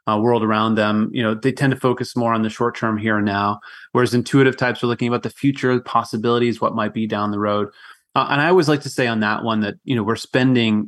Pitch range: 105-125 Hz